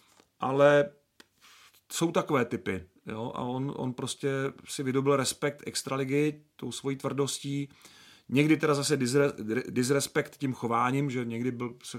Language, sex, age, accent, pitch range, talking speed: Czech, male, 40-59, native, 115-135 Hz, 130 wpm